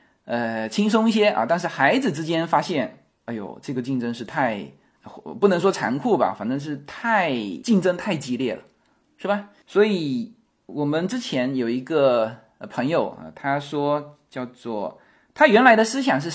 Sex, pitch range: male, 130-195 Hz